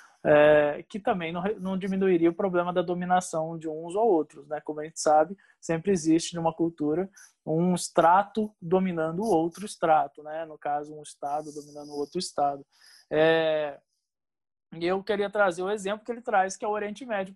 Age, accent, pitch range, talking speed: 20-39, Brazilian, 170-210 Hz, 185 wpm